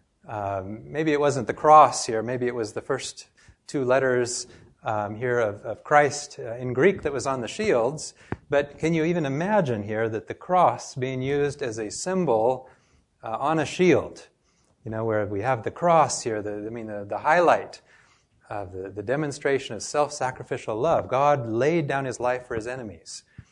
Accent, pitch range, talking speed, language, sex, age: American, 115-150 Hz, 185 wpm, English, male, 30-49